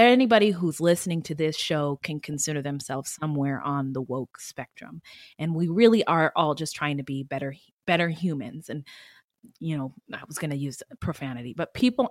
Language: English